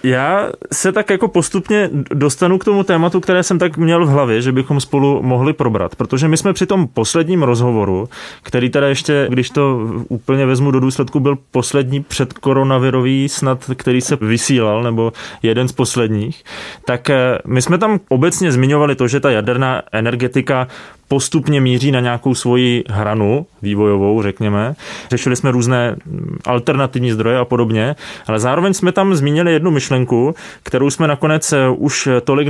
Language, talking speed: Czech, 155 wpm